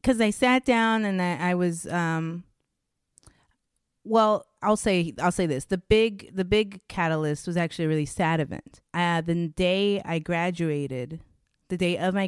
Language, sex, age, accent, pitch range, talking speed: English, female, 30-49, American, 145-180 Hz, 170 wpm